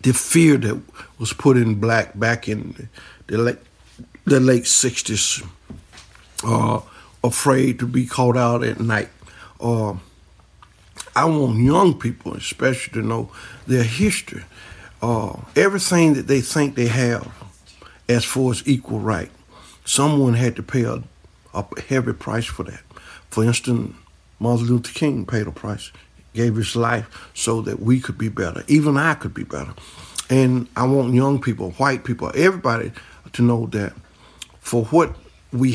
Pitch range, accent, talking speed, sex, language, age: 105-125 Hz, American, 150 wpm, male, English, 60-79